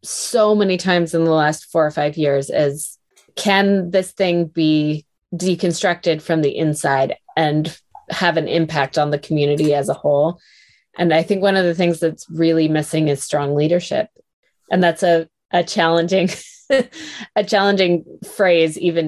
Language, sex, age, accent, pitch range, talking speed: English, female, 20-39, American, 155-180 Hz, 160 wpm